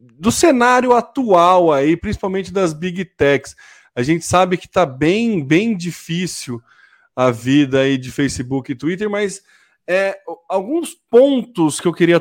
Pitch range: 145-200 Hz